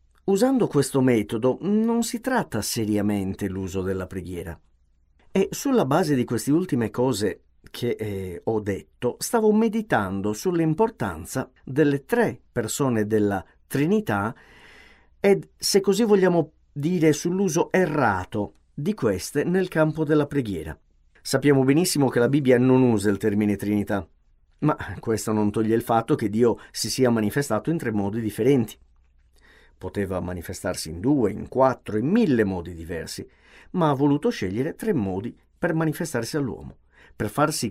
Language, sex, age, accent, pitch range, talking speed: Italian, male, 50-69, native, 100-160 Hz, 140 wpm